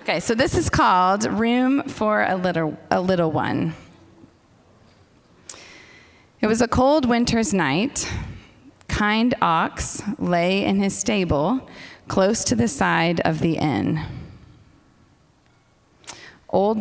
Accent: American